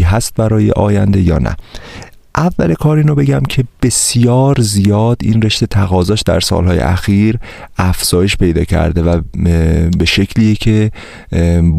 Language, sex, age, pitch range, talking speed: Persian, male, 30-49, 90-110 Hz, 120 wpm